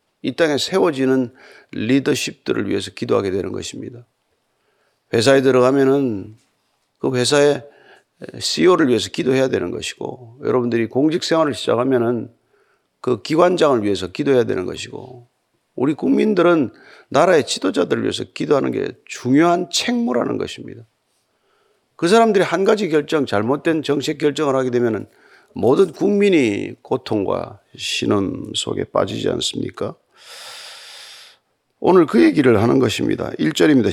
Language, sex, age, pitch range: Korean, male, 40-59, 125-180 Hz